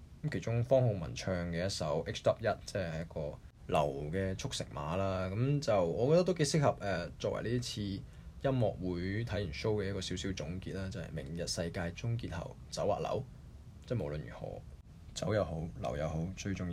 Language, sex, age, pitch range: Chinese, male, 20-39, 90-120 Hz